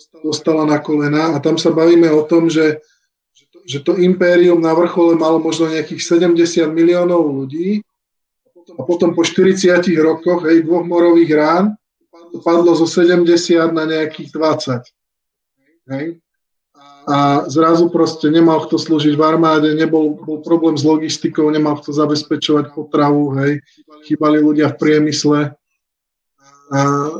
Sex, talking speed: male, 140 wpm